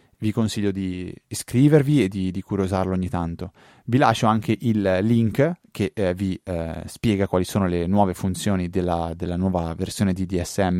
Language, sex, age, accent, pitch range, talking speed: Italian, male, 20-39, native, 95-110 Hz, 170 wpm